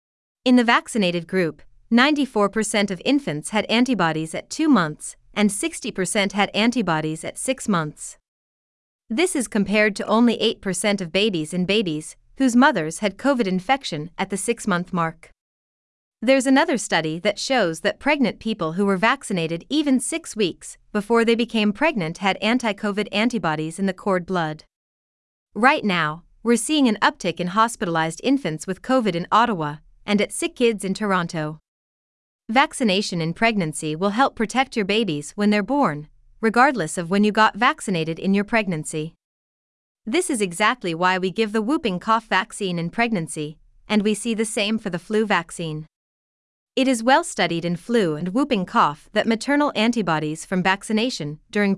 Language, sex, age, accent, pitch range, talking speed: English, female, 30-49, American, 175-235 Hz, 160 wpm